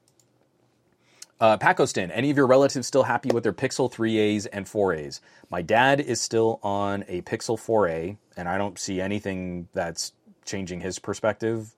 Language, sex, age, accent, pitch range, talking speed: English, male, 30-49, American, 90-110 Hz, 160 wpm